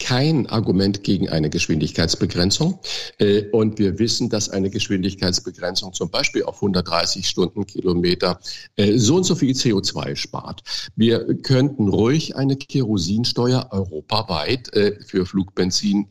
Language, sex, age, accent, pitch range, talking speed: German, male, 50-69, German, 95-130 Hz, 125 wpm